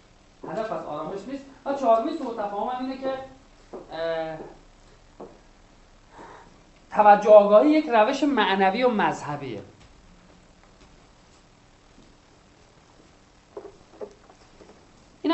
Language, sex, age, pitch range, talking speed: Persian, male, 40-59, 185-250 Hz, 70 wpm